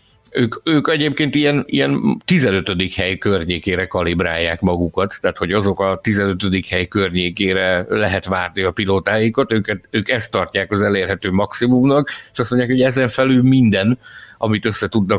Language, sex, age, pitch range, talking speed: Hungarian, male, 60-79, 95-115 Hz, 140 wpm